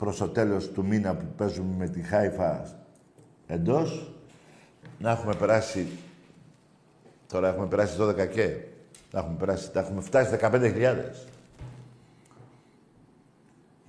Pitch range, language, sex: 95-130 Hz, Greek, male